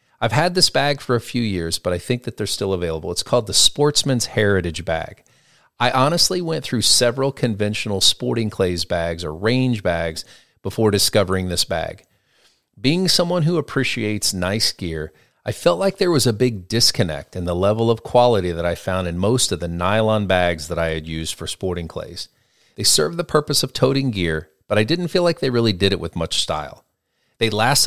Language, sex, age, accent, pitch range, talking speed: English, male, 40-59, American, 95-125 Hz, 200 wpm